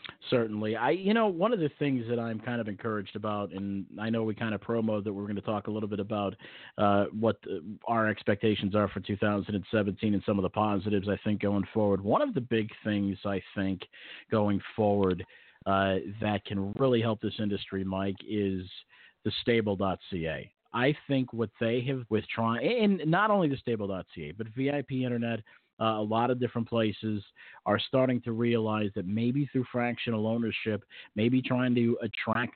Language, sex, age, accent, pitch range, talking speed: English, male, 40-59, American, 105-125 Hz, 190 wpm